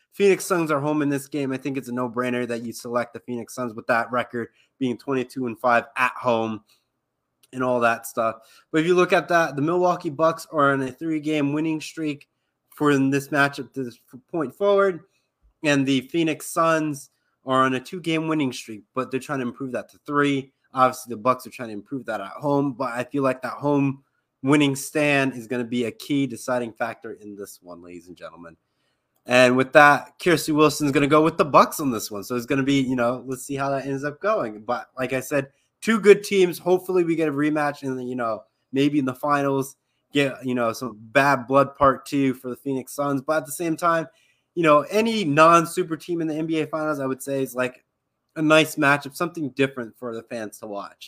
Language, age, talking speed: English, 20-39, 225 wpm